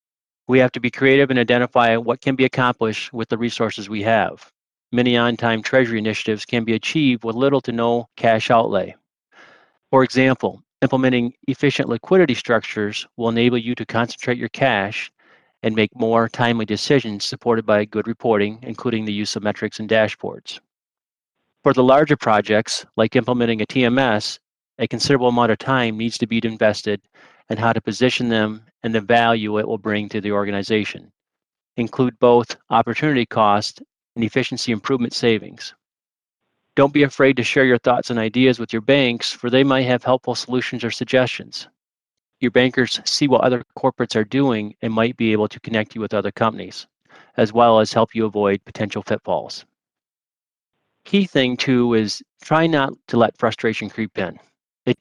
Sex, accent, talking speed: male, American, 170 wpm